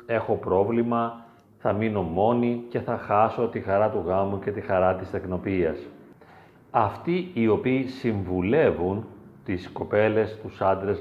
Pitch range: 95-125 Hz